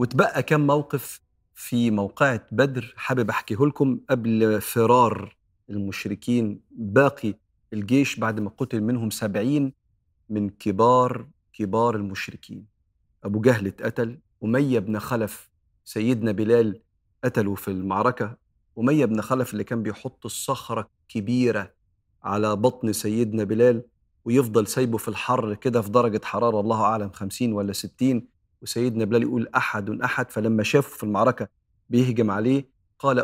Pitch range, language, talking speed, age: 105-125 Hz, Arabic, 130 wpm, 40-59